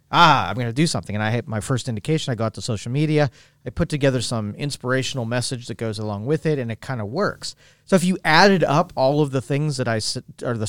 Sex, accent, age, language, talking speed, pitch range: male, American, 40-59, English, 260 wpm, 115-140 Hz